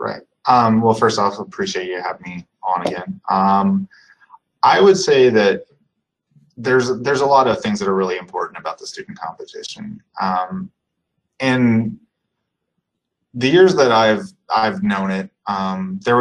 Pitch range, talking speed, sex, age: 95-125 Hz, 150 wpm, male, 20-39